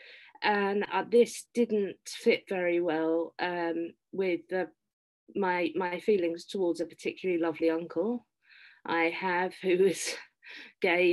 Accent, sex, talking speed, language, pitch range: British, female, 120 wpm, English, 170-195 Hz